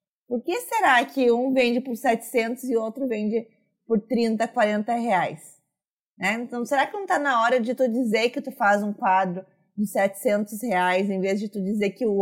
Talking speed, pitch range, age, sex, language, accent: 200 wpm, 205-275 Hz, 20-39, female, Portuguese, Brazilian